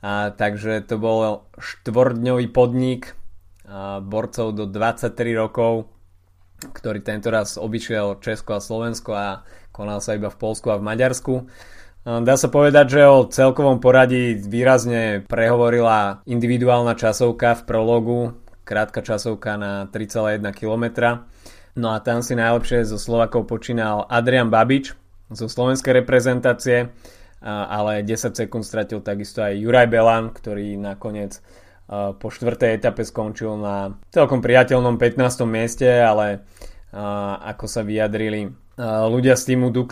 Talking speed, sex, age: 125 wpm, male, 20-39